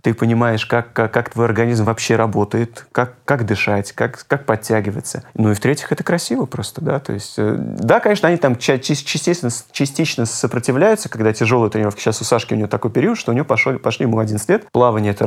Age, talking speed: 30-49, 200 wpm